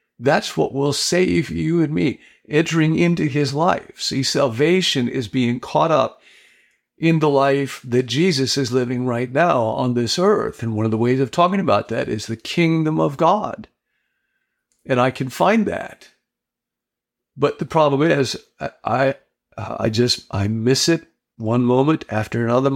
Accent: American